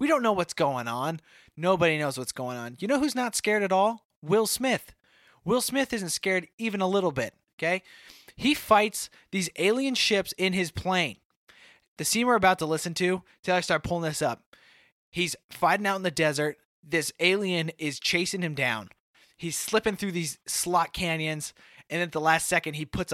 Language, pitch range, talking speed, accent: English, 140-185 Hz, 195 wpm, American